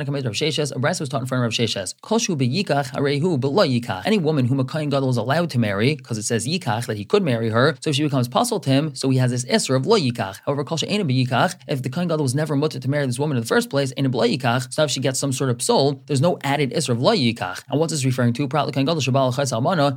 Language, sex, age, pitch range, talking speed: English, male, 20-39, 125-150 Hz, 265 wpm